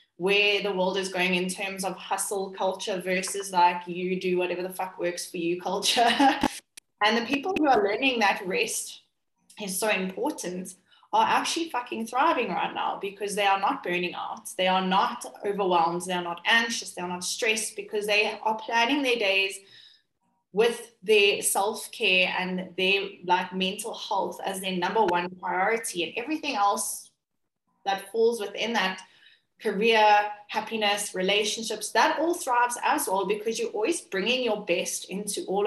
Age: 20-39